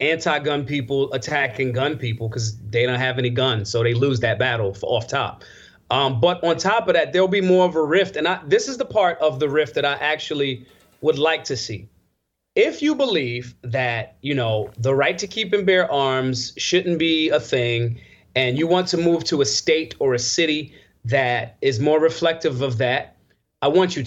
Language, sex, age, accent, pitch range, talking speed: English, male, 30-49, American, 135-190 Hz, 210 wpm